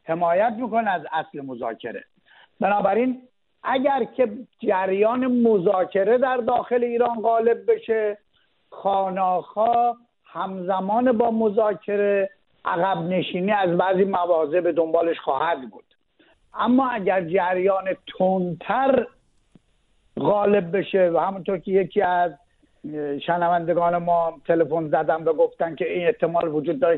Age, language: 60-79, English